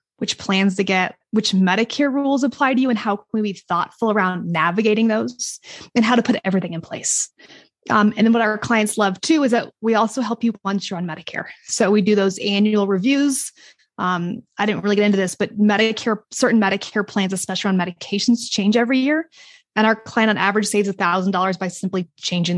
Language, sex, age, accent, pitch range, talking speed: English, female, 20-39, American, 190-230 Hz, 205 wpm